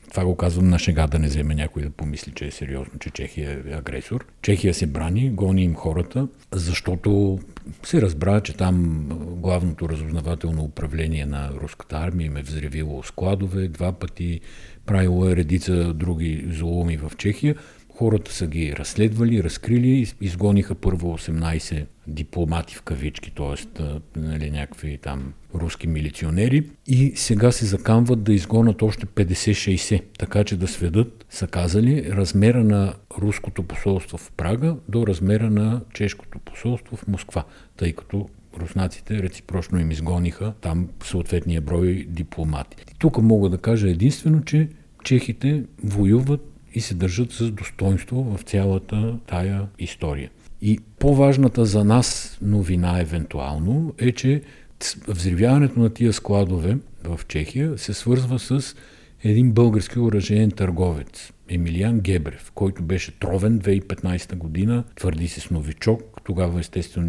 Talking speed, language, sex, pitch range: 135 wpm, Bulgarian, male, 80-110 Hz